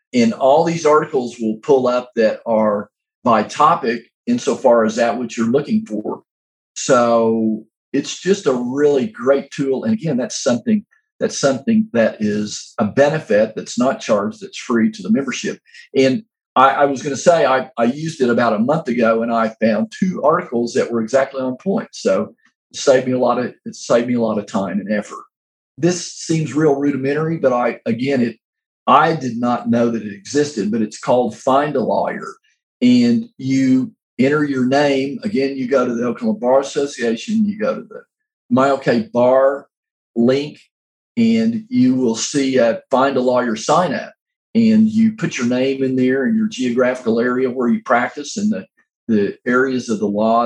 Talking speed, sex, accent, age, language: 185 wpm, male, American, 50-69, English